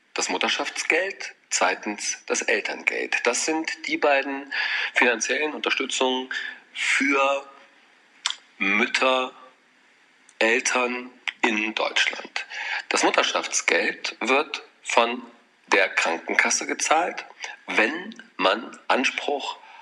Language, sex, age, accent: German, male, 40-59, German